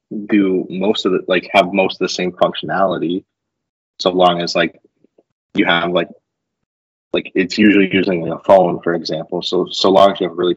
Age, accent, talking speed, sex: 20-39, American, 200 wpm, male